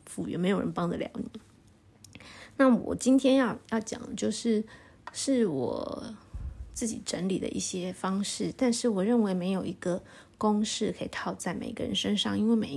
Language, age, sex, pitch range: Chinese, 30-49, female, 185-240 Hz